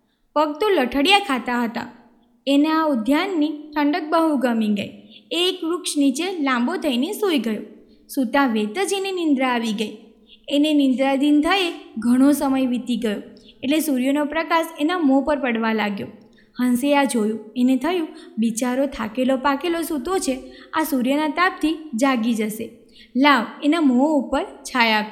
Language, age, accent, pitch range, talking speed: Gujarati, 20-39, native, 245-335 Hz, 135 wpm